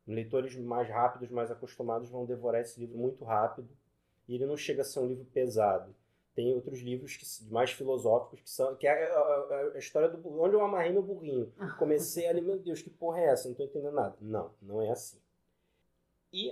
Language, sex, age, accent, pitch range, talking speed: Portuguese, male, 20-39, Brazilian, 115-160 Hz, 205 wpm